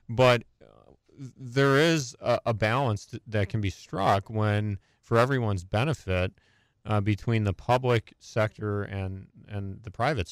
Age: 30-49